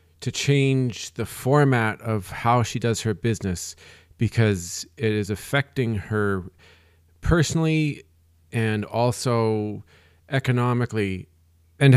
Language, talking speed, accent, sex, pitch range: English, 100 wpm, American, male, 100-140 Hz